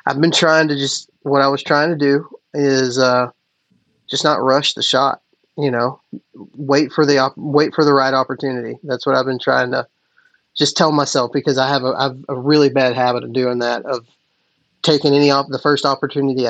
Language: English